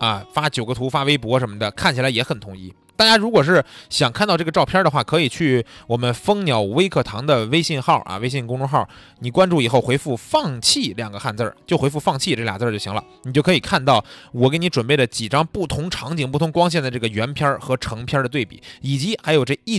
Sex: male